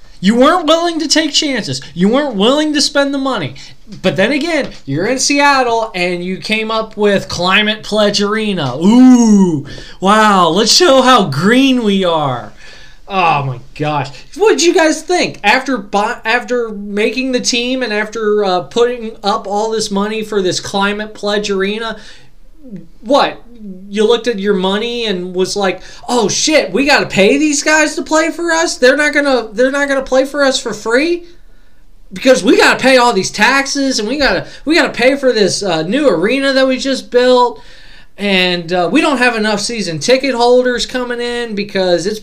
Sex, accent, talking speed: male, American, 180 wpm